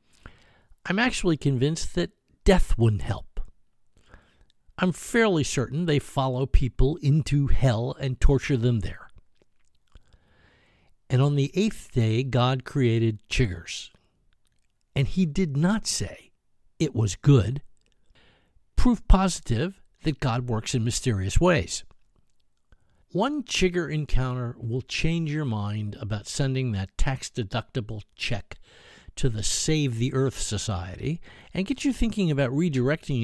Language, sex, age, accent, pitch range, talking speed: English, male, 60-79, American, 115-155 Hz, 120 wpm